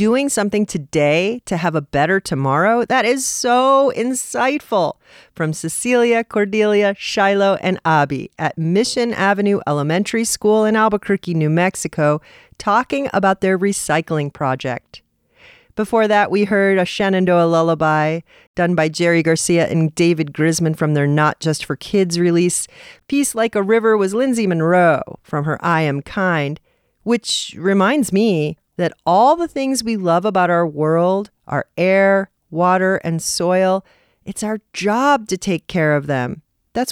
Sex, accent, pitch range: female, American, 160-225 Hz